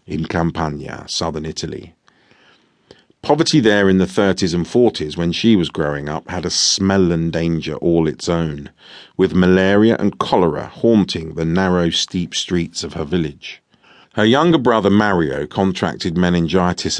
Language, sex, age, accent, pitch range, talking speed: English, male, 40-59, British, 80-95 Hz, 150 wpm